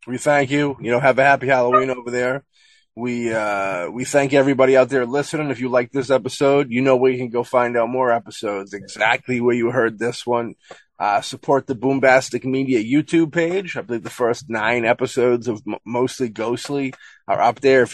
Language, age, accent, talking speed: English, 30-49, American, 200 wpm